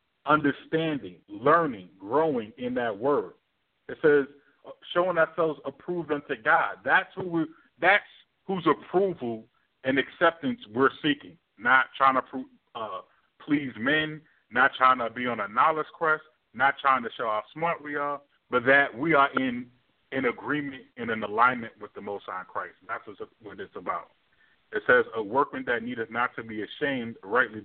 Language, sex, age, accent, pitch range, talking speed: English, male, 40-59, American, 120-165 Hz, 165 wpm